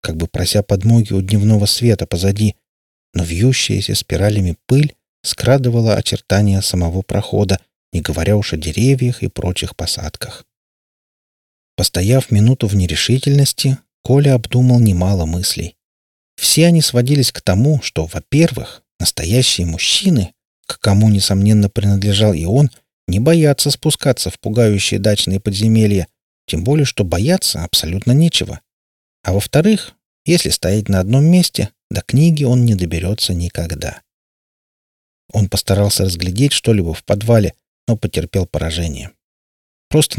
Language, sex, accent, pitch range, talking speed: Russian, male, native, 90-125 Hz, 125 wpm